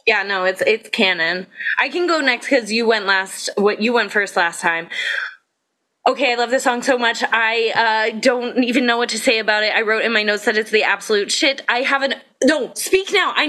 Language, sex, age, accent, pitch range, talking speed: English, female, 20-39, American, 205-275 Hz, 230 wpm